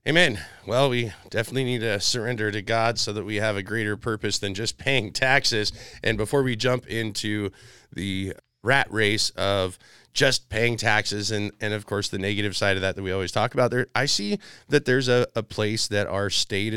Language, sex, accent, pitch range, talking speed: English, male, American, 95-115 Hz, 205 wpm